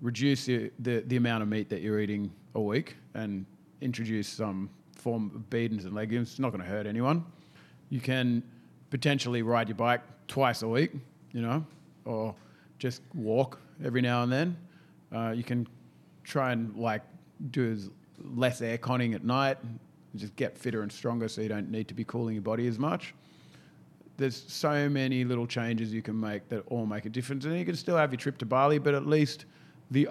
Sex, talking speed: male, 195 wpm